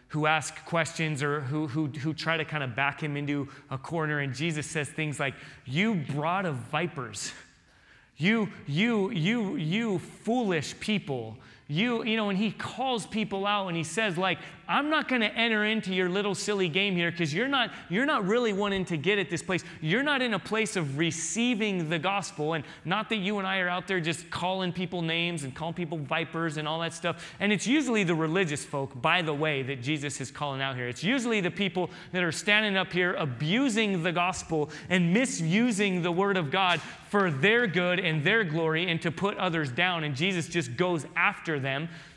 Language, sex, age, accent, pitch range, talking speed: English, male, 30-49, American, 140-190 Hz, 210 wpm